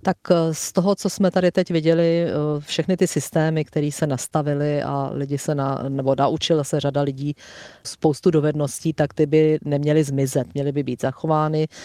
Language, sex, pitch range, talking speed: Czech, female, 140-155 Hz, 150 wpm